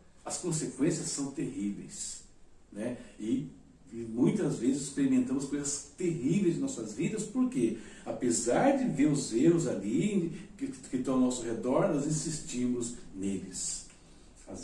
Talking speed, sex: 135 wpm, male